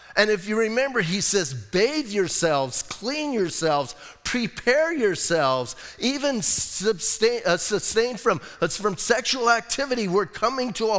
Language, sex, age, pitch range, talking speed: English, male, 40-59, 170-225 Hz, 135 wpm